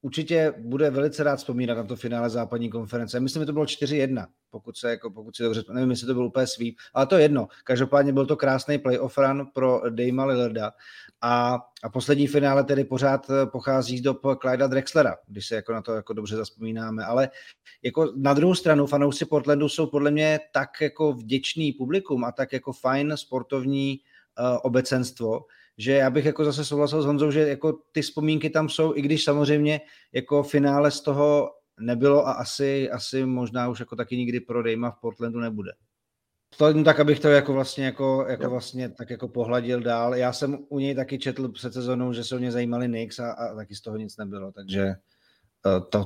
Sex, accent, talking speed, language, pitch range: male, native, 190 wpm, Czech, 120-145 Hz